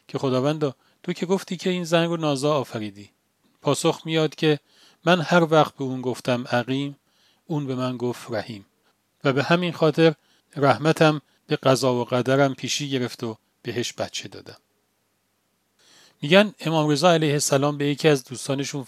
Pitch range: 120-155 Hz